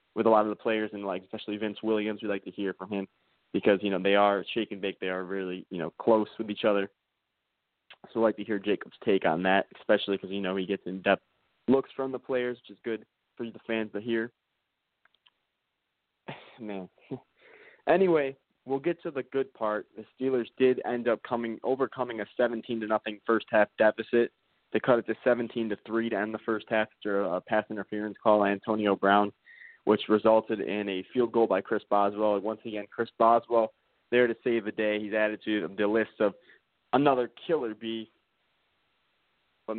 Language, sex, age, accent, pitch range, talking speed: English, male, 20-39, American, 105-125 Hz, 200 wpm